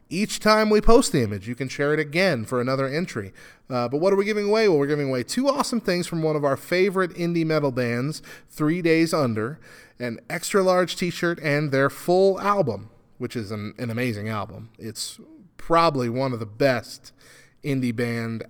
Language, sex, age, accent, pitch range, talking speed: English, male, 30-49, American, 125-185 Hz, 200 wpm